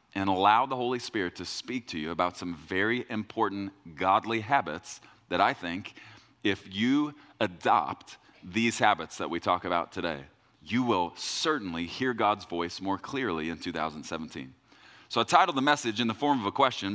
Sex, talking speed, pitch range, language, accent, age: male, 175 wpm, 100-130 Hz, English, American, 30-49